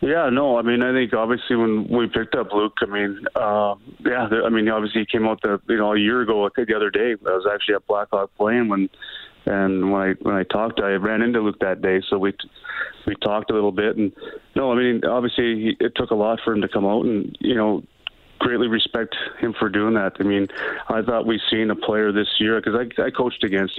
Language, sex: English, male